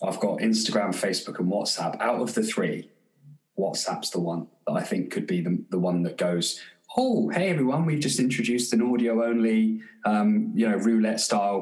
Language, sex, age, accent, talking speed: English, male, 20-39, British, 180 wpm